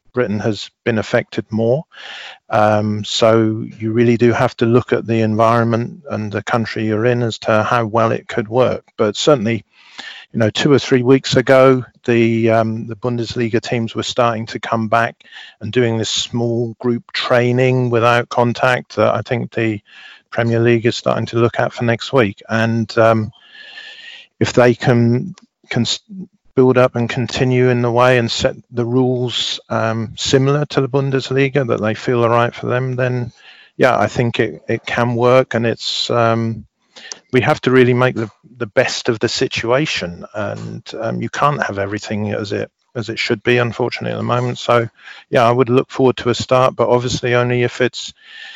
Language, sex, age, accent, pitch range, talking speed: English, male, 40-59, British, 115-130 Hz, 185 wpm